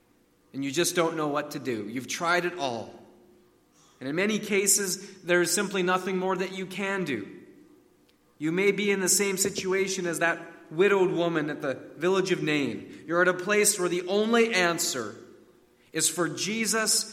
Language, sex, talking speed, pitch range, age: English, male, 180 wpm, 120-185 Hz, 30-49